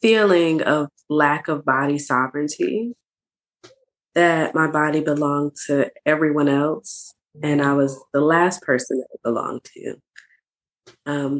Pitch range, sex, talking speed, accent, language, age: 140-160 Hz, female, 125 wpm, American, English, 20-39